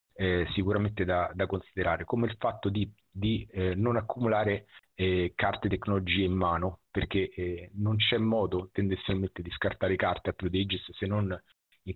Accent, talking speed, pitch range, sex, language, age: native, 160 wpm, 90-105 Hz, male, Italian, 40-59